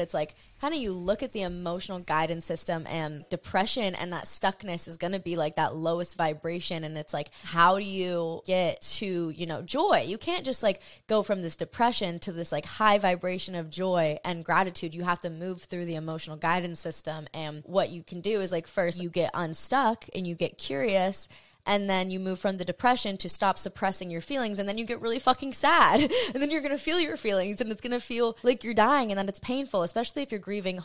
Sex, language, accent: female, English, American